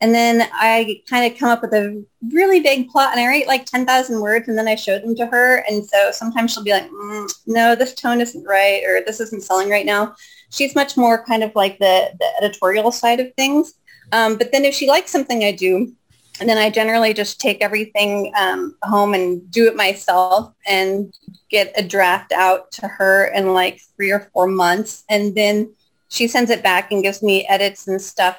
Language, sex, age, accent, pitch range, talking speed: English, female, 30-49, American, 195-240 Hz, 215 wpm